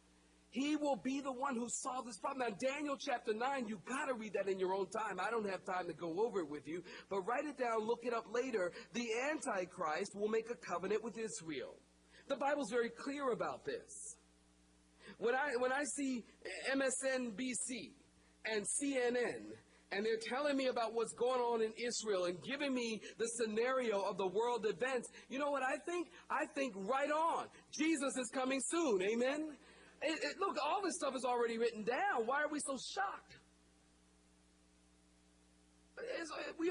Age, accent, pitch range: 40-59, American, 215-280 Hz